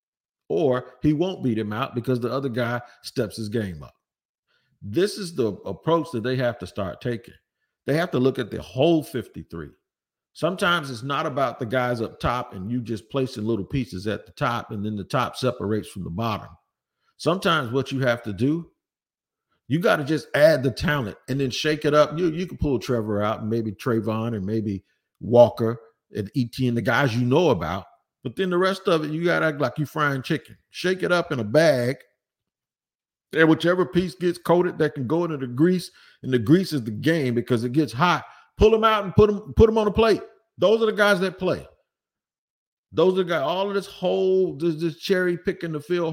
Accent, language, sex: American, English, male